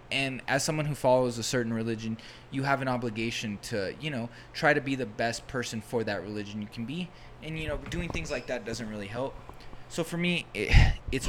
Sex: male